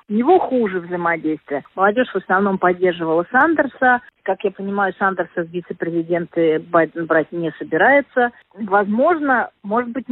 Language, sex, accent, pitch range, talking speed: Russian, female, native, 190-250 Hz, 130 wpm